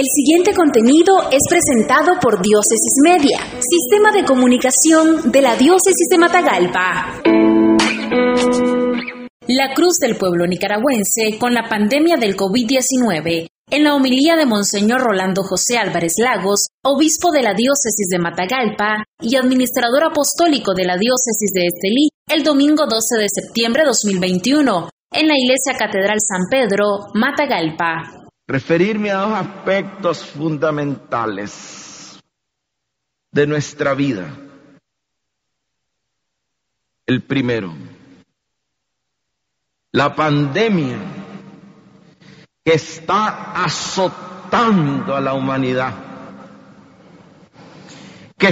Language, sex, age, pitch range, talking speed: Spanish, female, 30-49, 165-255 Hz, 100 wpm